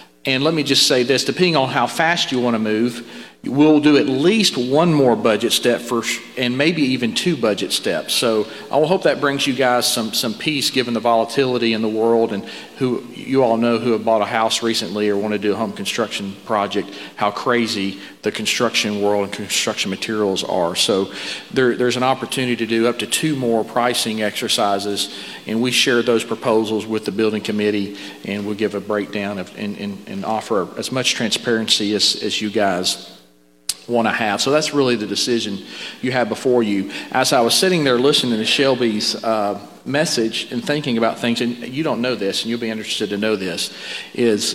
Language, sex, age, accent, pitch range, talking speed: English, male, 40-59, American, 105-125 Hz, 205 wpm